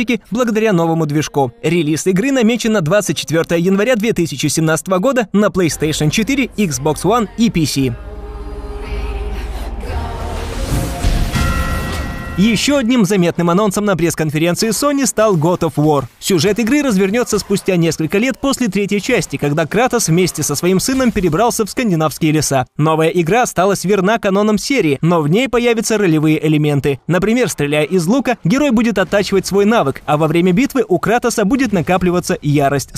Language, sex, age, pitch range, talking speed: Russian, male, 20-39, 155-220 Hz, 140 wpm